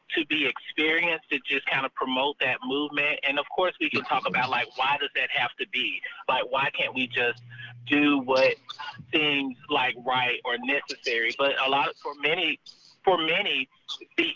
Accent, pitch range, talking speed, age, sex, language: American, 135-185 Hz, 190 wpm, 30-49, male, English